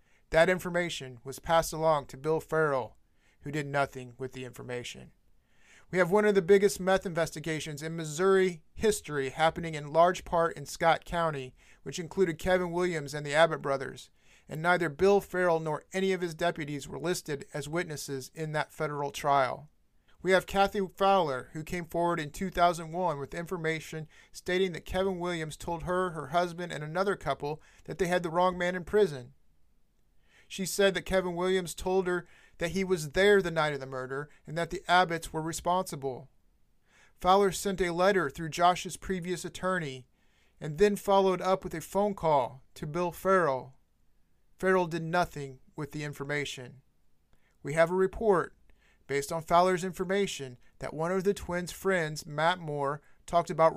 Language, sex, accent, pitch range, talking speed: English, male, American, 150-185 Hz, 170 wpm